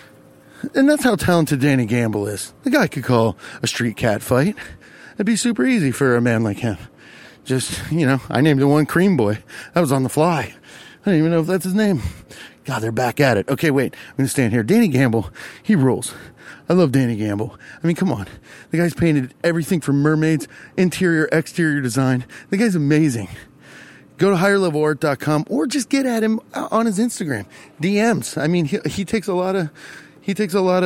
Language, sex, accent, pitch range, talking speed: English, male, American, 120-170 Hz, 205 wpm